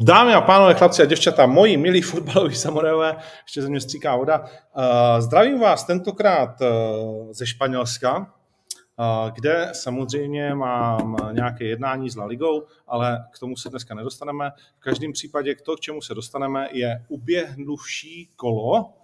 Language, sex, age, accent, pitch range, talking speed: Czech, male, 40-59, native, 120-155 Hz, 140 wpm